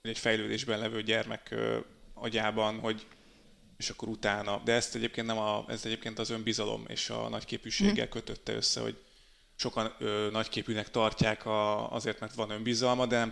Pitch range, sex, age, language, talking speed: 110-120 Hz, male, 30-49, Hungarian, 165 wpm